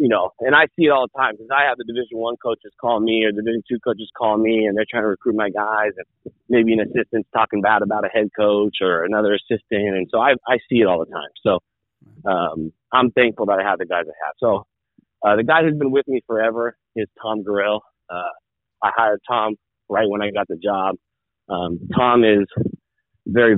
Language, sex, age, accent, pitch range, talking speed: English, male, 30-49, American, 100-115 Hz, 230 wpm